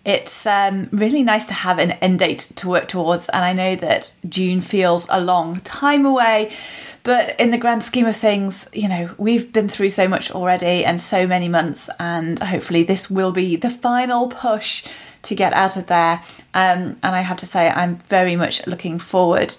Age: 30-49